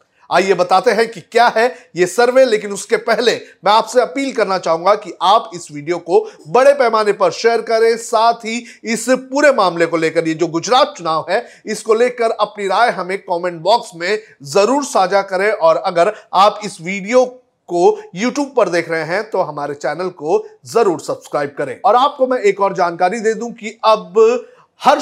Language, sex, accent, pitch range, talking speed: Hindi, male, native, 180-250 Hz, 185 wpm